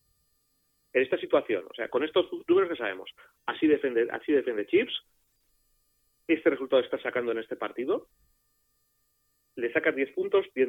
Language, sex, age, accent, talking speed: Spanish, male, 30-49, Spanish, 150 wpm